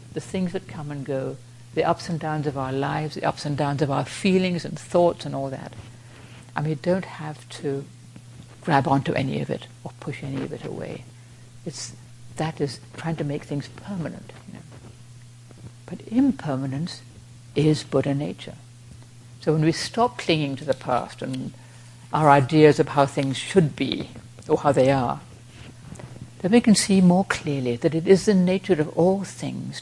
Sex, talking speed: female, 185 wpm